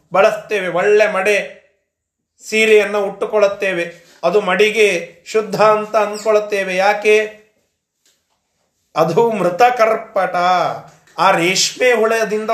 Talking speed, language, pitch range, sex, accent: 80 wpm, Kannada, 185-240 Hz, male, native